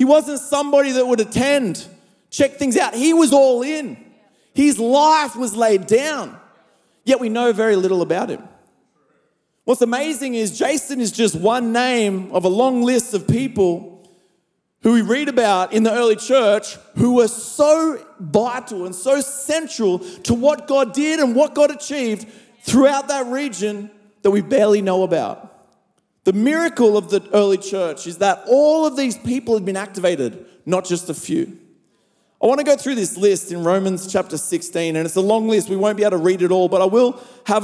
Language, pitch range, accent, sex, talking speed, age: English, 190-255 Hz, Australian, male, 185 wpm, 30-49